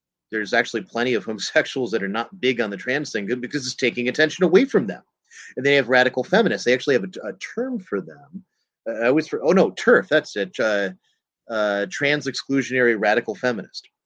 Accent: American